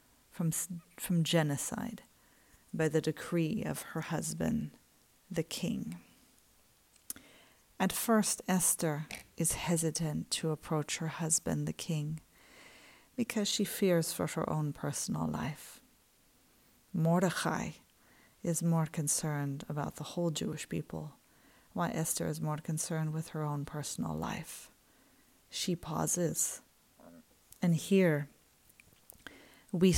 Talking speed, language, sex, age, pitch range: 110 wpm, English, female, 40-59, 155-175 Hz